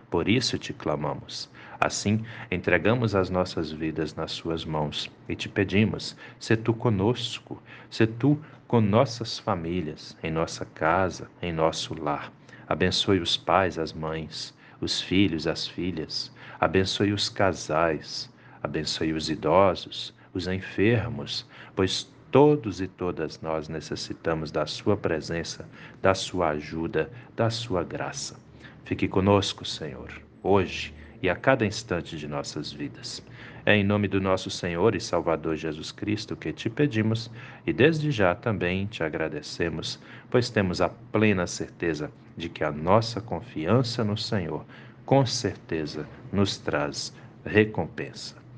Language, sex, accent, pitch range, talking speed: Portuguese, male, Brazilian, 85-115 Hz, 135 wpm